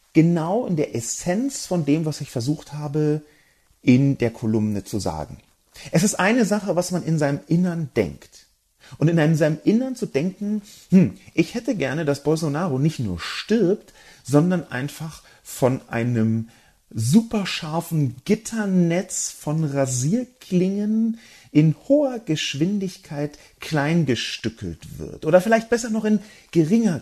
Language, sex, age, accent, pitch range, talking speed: German, male, 40-59, German, 110-175 Hz, 135 wpm